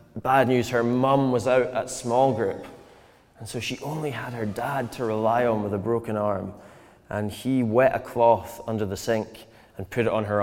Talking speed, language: 205 wpm, English